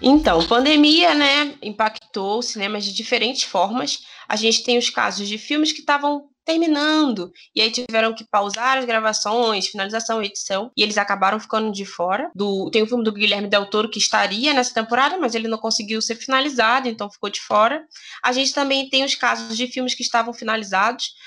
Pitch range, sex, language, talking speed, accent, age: 205-270 Hz, female, Portuguese, 190 wpm, Brazilian, 20-39